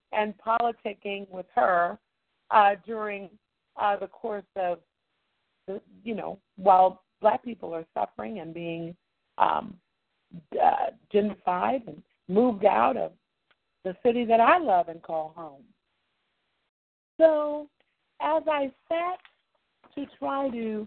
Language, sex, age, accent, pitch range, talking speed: English, female, 50-69, American, 185-255 Hz, 120 wpm